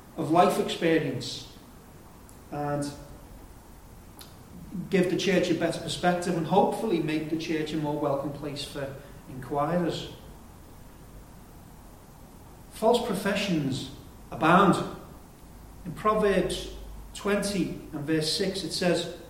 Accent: British